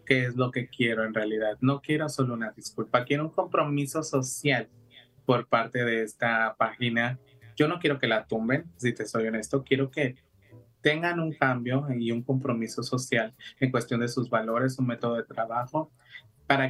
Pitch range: 115-135 Hz